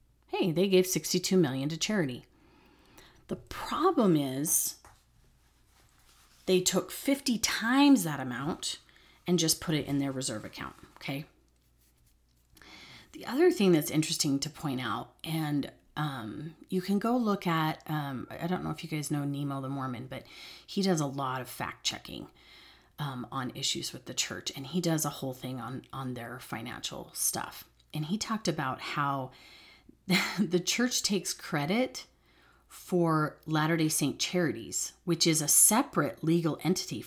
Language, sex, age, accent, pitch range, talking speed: English, female, 30-49, American, 140-185 Hz, 155 wpm